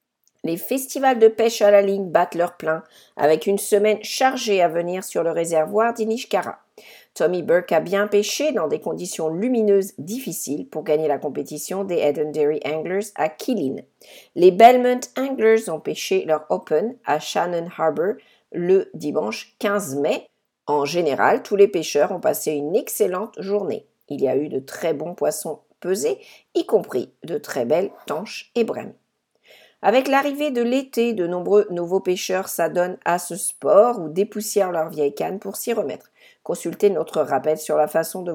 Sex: female